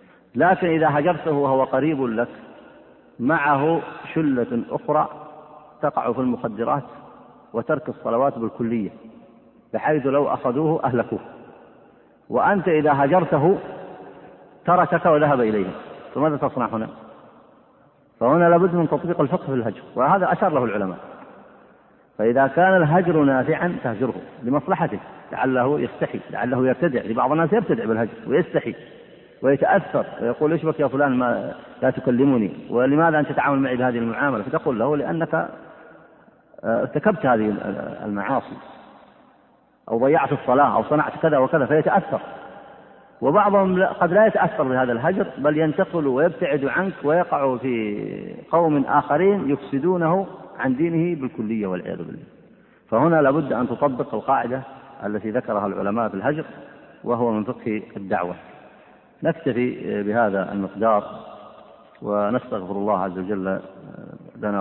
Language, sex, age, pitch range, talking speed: Arabic, male, 50-69, 115-155 Hz, 115 wpm